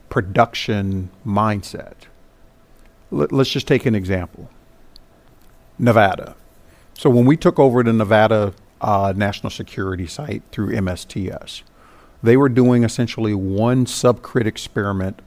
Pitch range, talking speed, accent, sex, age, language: 105-140 Hz, 115 wpm, American, male, 50-69, English